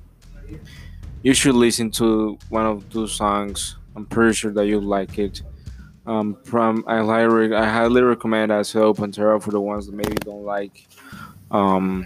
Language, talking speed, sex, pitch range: English, 160 wpm, male, 90-115 Hz